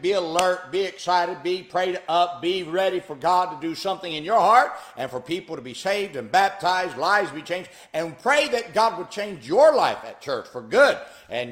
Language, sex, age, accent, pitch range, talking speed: English, male, 60-79, American, 150-200 Hz, 220 wpm